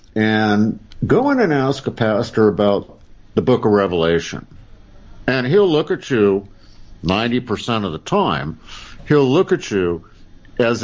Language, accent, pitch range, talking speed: English, American, 95-125 Hz, 145 wpm